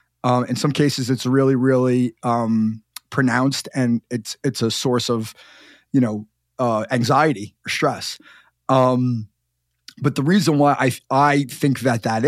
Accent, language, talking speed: American, English, 150 wpm